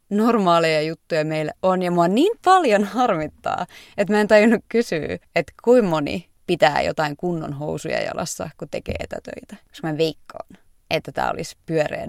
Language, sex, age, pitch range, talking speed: Finnish, female, 20-39, 160-200 Hz, 155 wpm